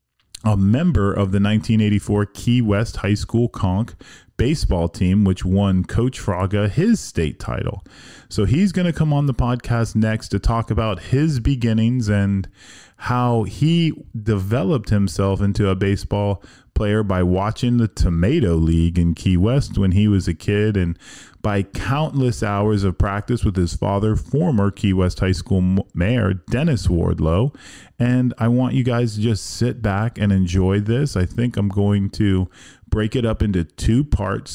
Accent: American